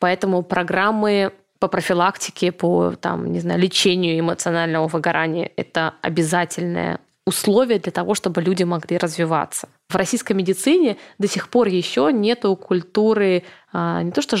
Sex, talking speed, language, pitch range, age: female, 135 wpm, Russian, 175-210 Hz, 20-39